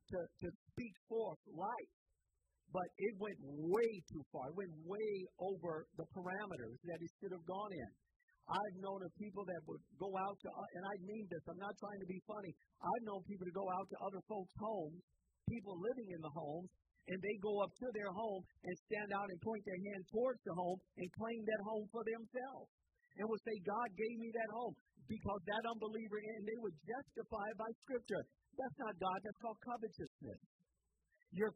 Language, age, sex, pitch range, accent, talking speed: English, 50-69, male, 185-225 Hz, American, 200 wpm